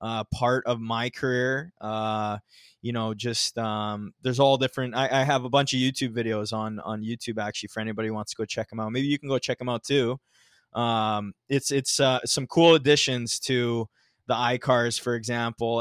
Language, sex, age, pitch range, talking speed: English, male, 20-39, 115-135 Hz, 205 wpm